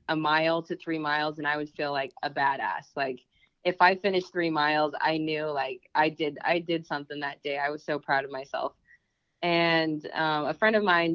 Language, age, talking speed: English, 20-39, 215 wpm